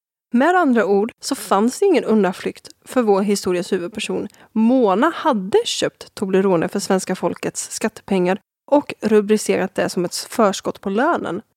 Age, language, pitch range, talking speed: 20-39, Swedish, 195-240 Hz, 140 wpm